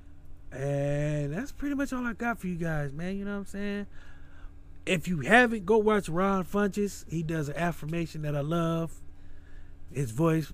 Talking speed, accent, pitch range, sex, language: 180 wpm, American, 115-175 Hz, male, English